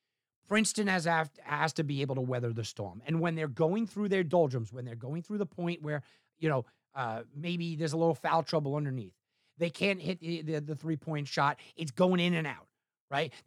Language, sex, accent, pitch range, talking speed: English, male, American, 135-185 Hz, 210 wpm